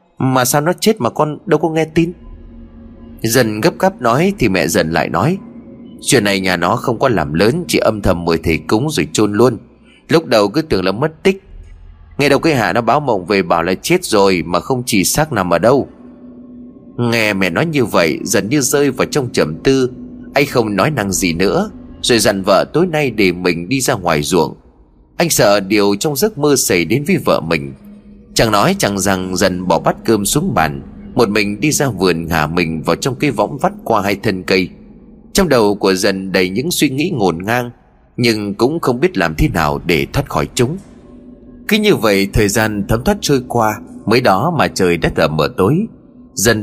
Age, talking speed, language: 20-39, 215 wpm, Vietnamese